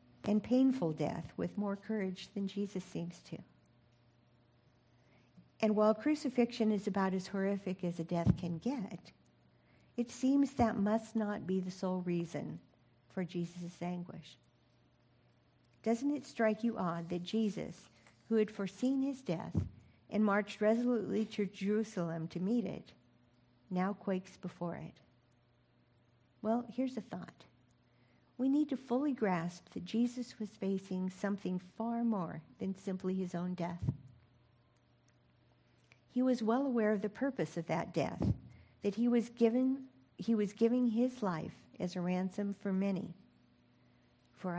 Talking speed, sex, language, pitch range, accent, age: 140 wpm, female, English, 170-225 Hz, American, 50-69